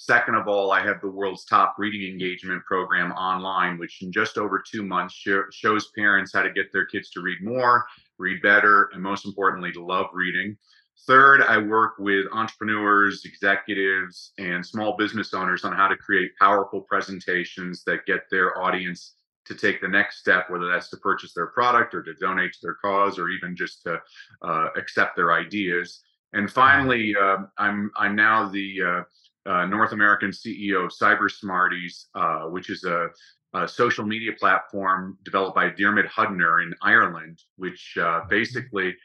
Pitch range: 90-105 Hz